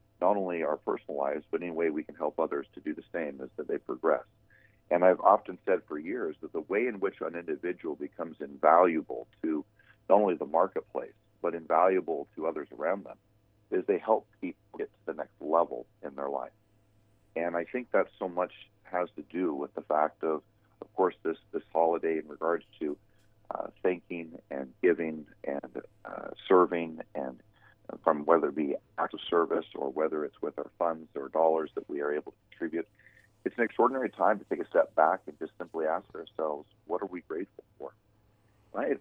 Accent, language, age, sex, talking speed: American, English, 40-59, male, 200 wpm